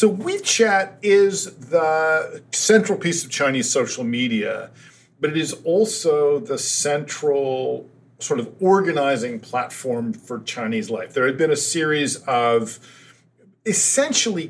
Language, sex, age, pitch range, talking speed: English, male, 50-69, 130-190 Hz, 125 wpm